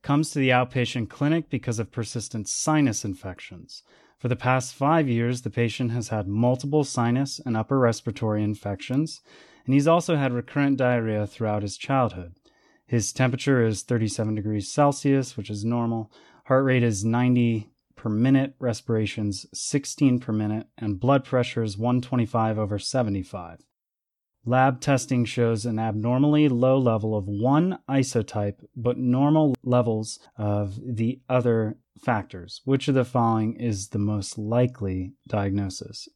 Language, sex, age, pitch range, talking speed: English, male, 30-49, 105-130 Hz, 145 wpm